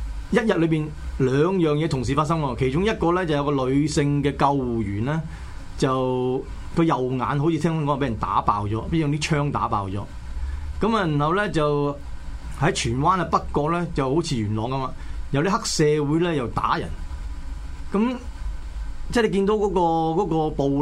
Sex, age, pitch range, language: male, 30-49, 125-170 Hz, Chinese